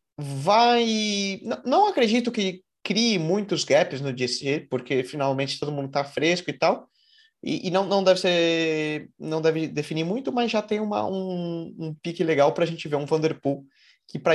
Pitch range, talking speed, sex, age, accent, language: 135-180 Hz, 185 wpm, male, 20-39, Brazilian, Portuguese